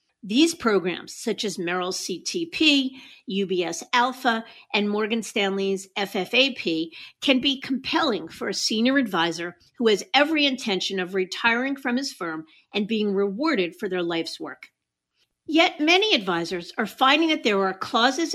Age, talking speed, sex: 50-69, 145 wpm, female